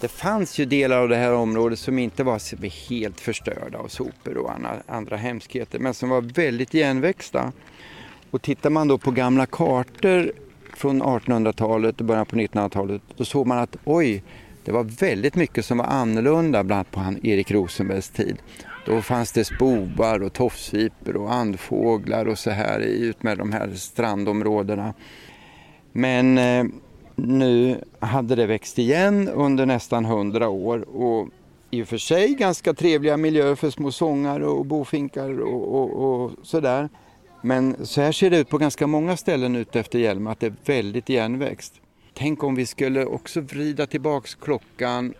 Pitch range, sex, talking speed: 110-140 Hz, male, 160 wpm